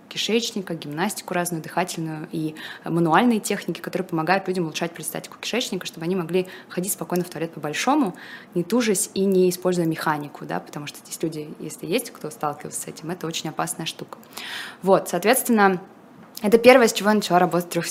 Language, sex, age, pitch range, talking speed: Russian, female, 20-39, 165-205 Hz, 180 wpm